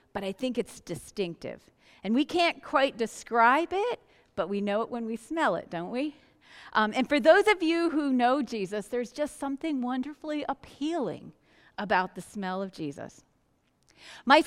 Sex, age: female, 40-59